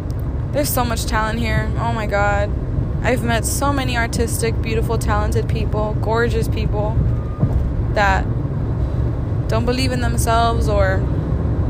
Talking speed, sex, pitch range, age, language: 125 wpm, female, 105-115 Hz, 20-39, English